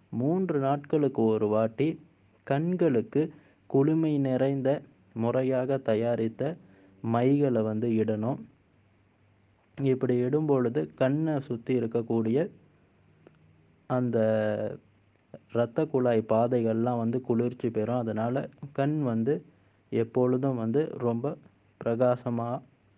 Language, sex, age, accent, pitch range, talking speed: Tamil, male, 20-39, native, 110-135 Hz, 80 wpm